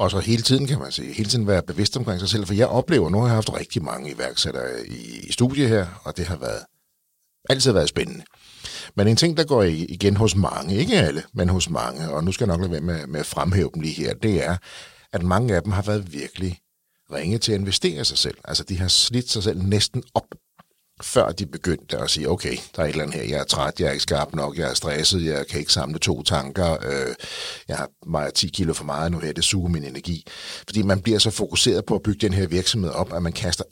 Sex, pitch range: male, 90-115 Hz